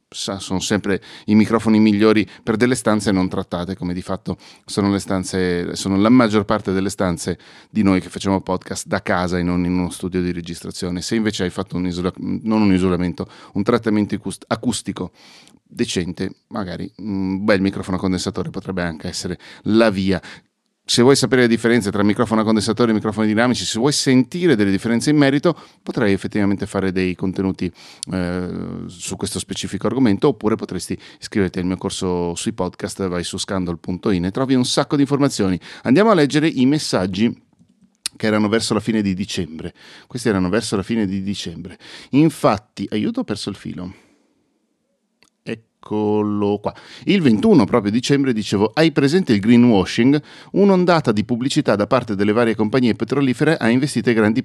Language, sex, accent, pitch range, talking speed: Italian, male, native, 95-120 Hz, 170 wpm